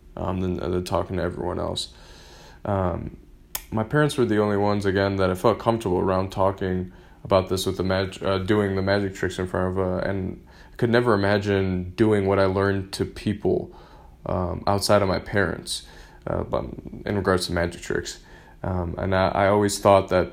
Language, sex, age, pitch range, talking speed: English, male, 20-39, 90-100 Hz, 190 wpm